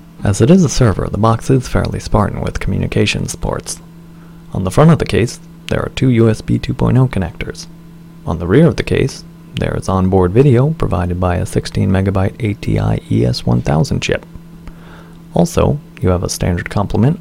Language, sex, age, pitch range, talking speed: English, male, 30-49, 100-165 Hz, 165 wpm